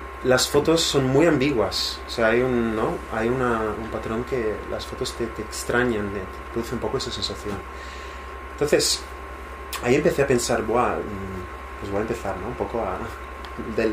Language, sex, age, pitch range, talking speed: Spanish, male, 30-49, 90-120 Hz, 175 wpm